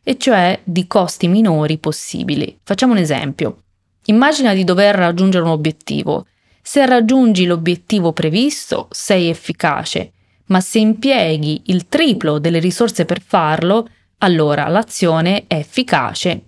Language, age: Italian, 20-39